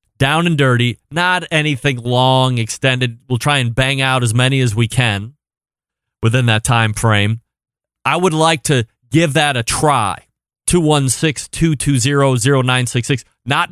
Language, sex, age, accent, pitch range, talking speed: English, male, 30-49, American, 120-150 Hz, 135 wpm